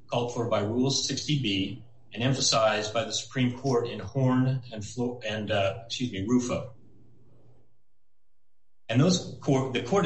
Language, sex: English, male